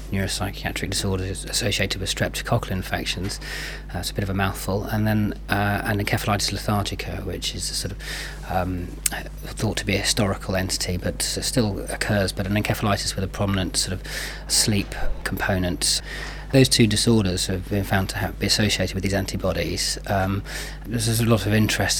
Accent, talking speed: British, 170 wpm